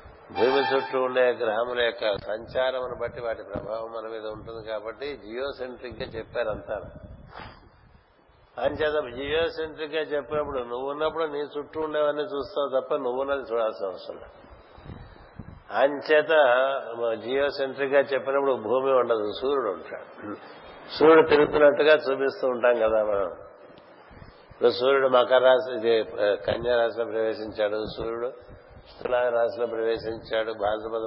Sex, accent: male, native